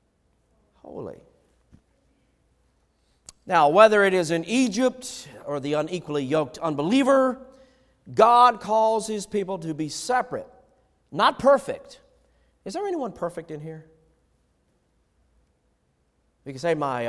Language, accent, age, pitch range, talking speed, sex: English, American, 50-69, 110-180 Hz, 110 wpm, male